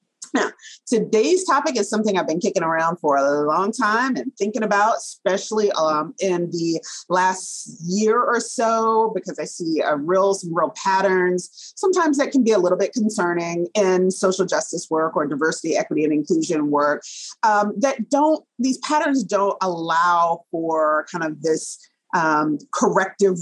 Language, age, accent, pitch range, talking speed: English, 30-49, American, 175-225 Hz, 160 wpm